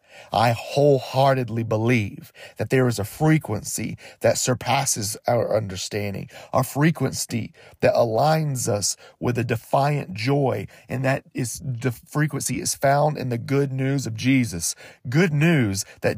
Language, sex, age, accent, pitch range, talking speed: English, male, 40-59, American, 125-155 Hz, 135 wpm